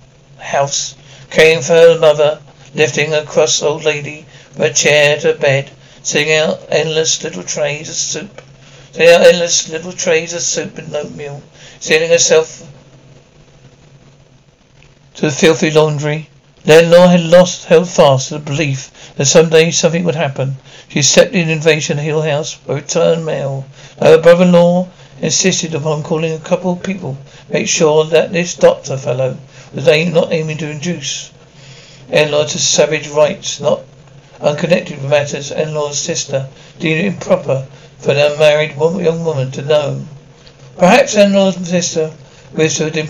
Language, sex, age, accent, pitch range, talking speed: English, male, 60-79, British, 140-165 Hz, 155 wpm